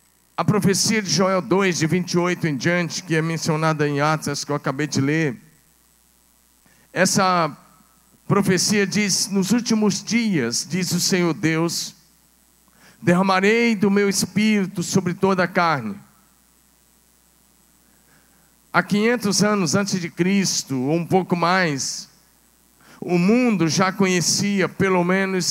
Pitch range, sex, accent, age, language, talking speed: 175-200 Hz, male, Brazilian, 50-69, Portuguese, 125 wpm